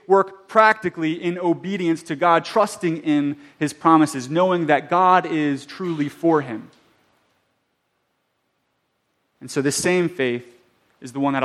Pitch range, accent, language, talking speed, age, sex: 130-185 Hz, American, English, 135 wpm, 30-49, male